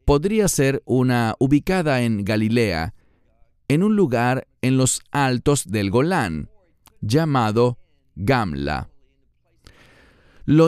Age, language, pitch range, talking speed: 40-59, English, 115-155 Hz, 95 wpm